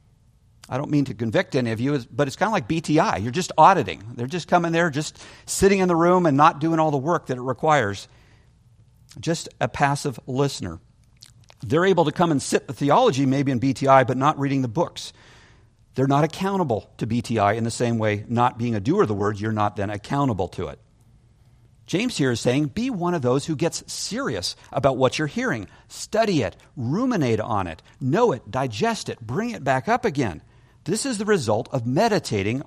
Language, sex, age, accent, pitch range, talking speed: English, male, 50-69, American, 120-155 Hz, 205 wpm